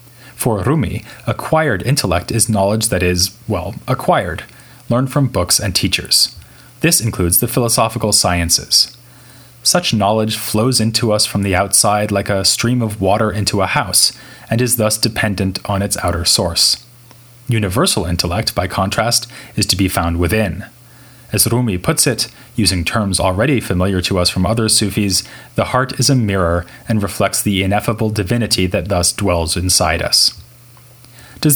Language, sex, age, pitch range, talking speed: English, male, 30-49, 95-120 Hz, 155 wpm